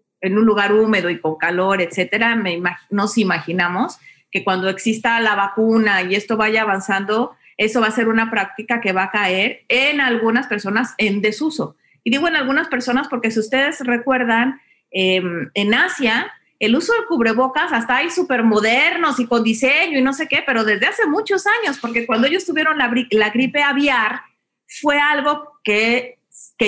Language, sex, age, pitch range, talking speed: Spanish, female, 40-59, 215-275 Hz, 180 wpm